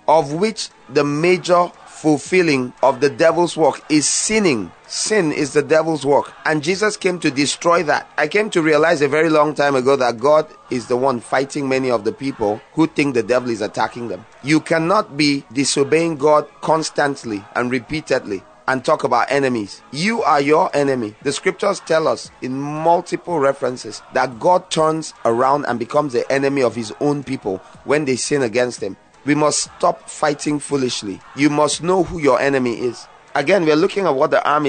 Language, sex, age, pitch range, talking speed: English, male, 30-49, 135-165 Hz, 185 wpm